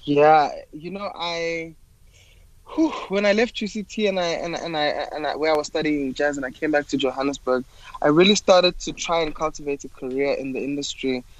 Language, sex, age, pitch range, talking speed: English, male, 20-39, 130-165 Hz, 215 wpm